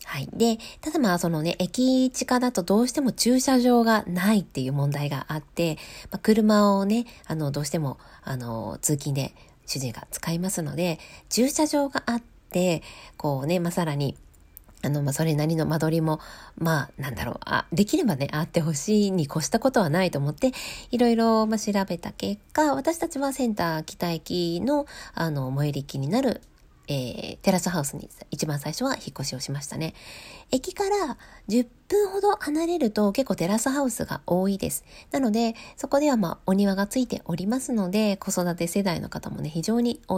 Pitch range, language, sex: 150-225 Hz, Japanese, female